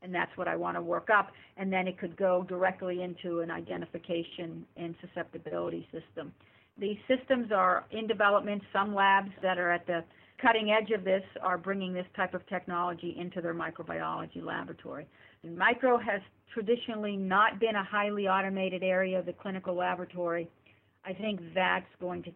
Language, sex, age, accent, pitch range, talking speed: English, female, 50-69, American, 185-230 Hz, 170 wpm